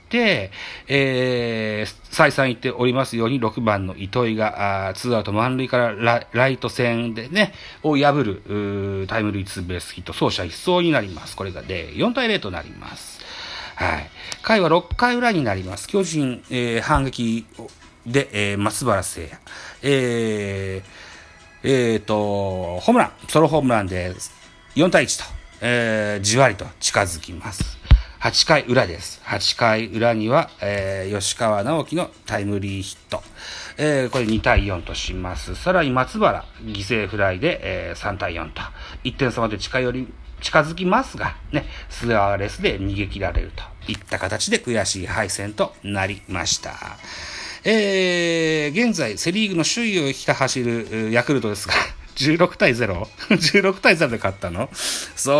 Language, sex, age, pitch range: Japanese, male, 40-59, 100-135 Hz